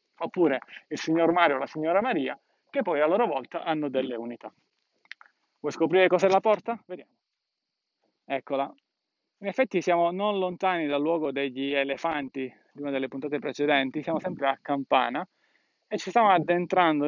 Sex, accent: male, native